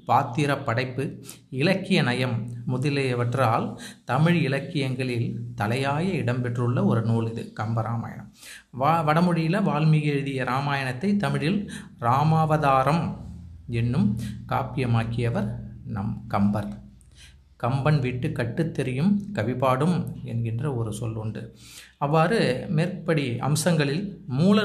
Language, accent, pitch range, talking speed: Tamil, native, 120-160 Hz, 90 wpm